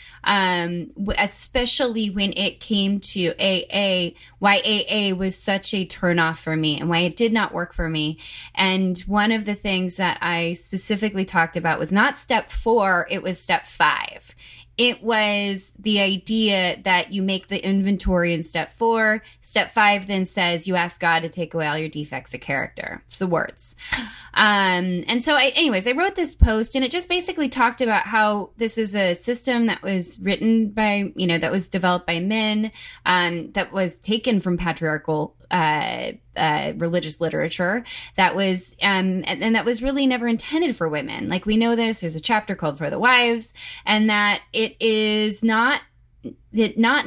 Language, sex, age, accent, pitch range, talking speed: English, female, 20-39, American, 175-225 Hz, 180 wpm